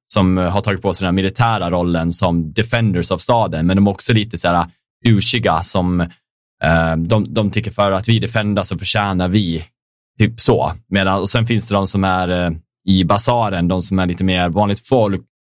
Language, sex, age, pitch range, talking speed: Swedish, male, 20-39, 85-105 Hz, 200 wpm